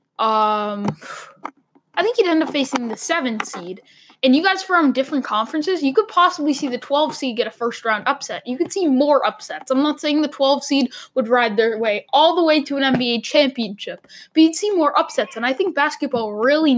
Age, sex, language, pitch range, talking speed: 10-29, female, English, 240-300 Hz, 210 wpm